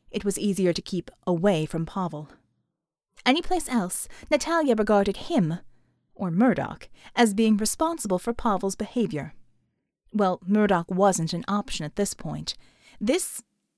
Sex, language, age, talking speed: female, English, 30-49, 130 wpm